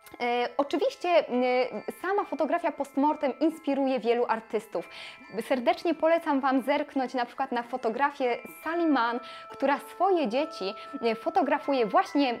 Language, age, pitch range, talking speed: Polish, 10-29, 240-310 Hz, 100 wpm